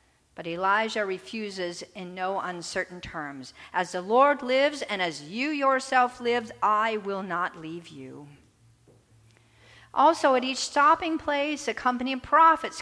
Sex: female